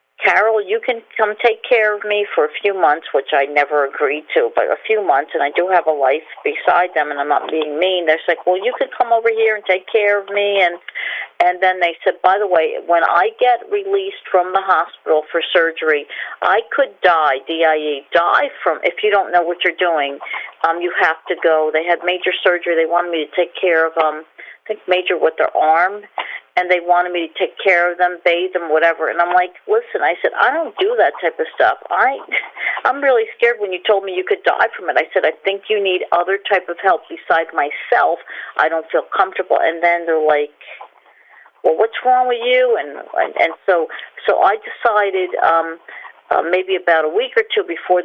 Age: 50-69